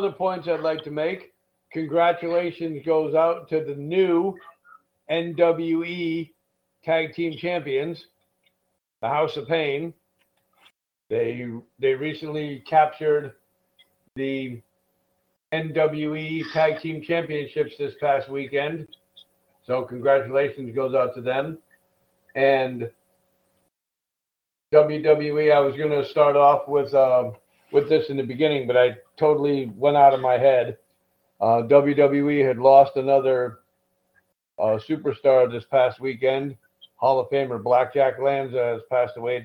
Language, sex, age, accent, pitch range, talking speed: English, male, 60-79, American, 125-160 Hz, 120 wpm